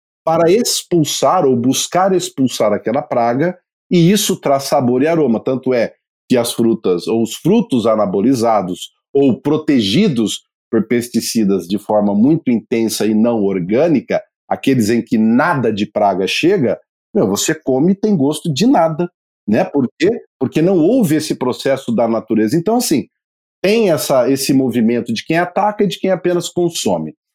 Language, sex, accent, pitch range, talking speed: Portuguese, male, Brazilian, 115-180 Hz, 150 wpm